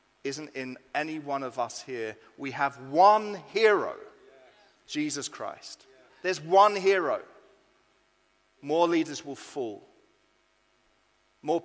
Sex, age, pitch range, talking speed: male, 40-59, 140-205 Hz, 110 wpm